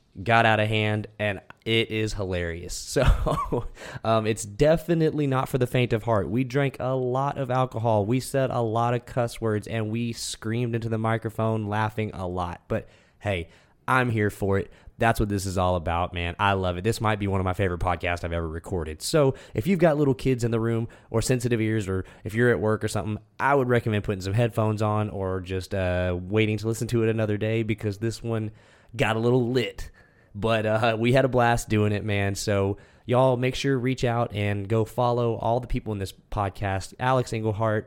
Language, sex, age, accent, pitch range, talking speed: English, male, 20-39, American, 100-120 Hz, 215 wpm